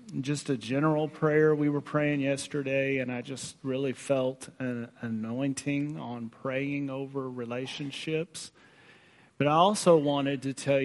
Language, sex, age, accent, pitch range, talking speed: English, male, 40-59, American, 120-150 Hz, 140 wpm